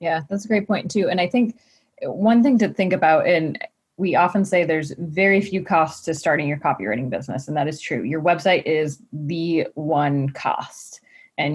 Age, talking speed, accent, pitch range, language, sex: 20-39, 195 wpm, American, 165-215 Hz, English, female